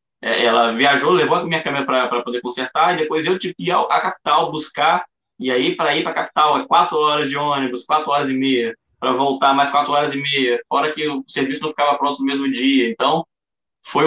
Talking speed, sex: 230 wpm, male